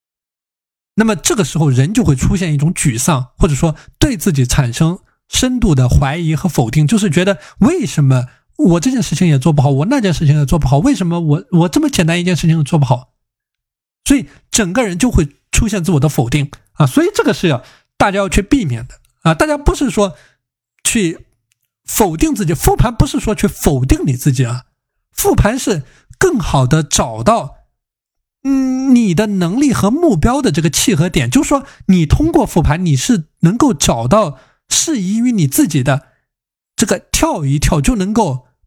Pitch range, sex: 140-220 Hz, male